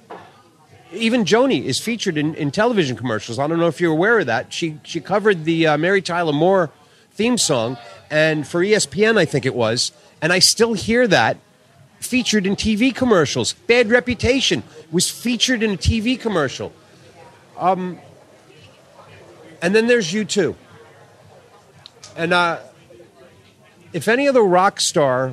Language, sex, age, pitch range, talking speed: English, male, 40-59, 150-200 Hz, 150 wpm